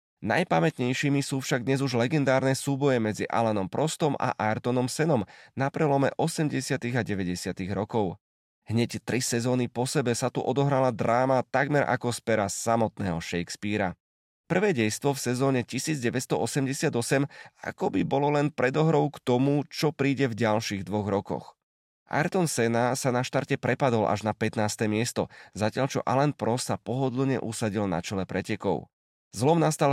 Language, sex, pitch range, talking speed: Slovak, male, 110-140 Hz, 145 wpm